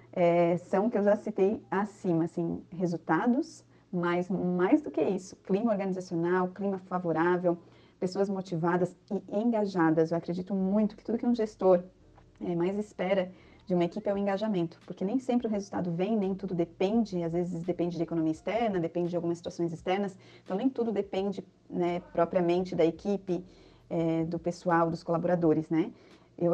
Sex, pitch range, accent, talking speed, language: female, 175-195 Hz, Brazilian, 165 wpm, Portuguese